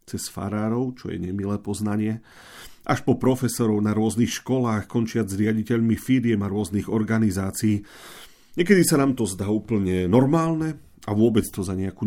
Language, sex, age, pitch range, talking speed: Slovak, male, 40-59, 100-120 Hz, 155 wpm